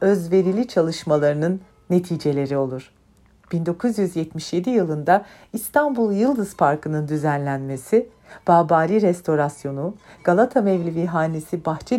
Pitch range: 150-205 Hz